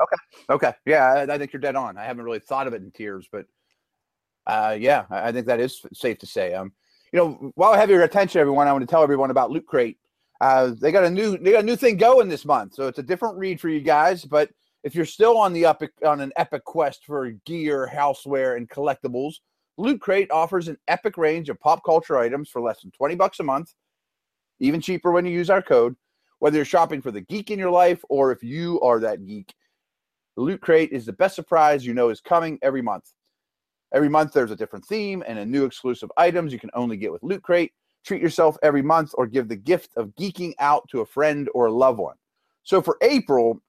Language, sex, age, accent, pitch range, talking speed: English, male, 30-49, American, 135-180 Hz, 235 wpm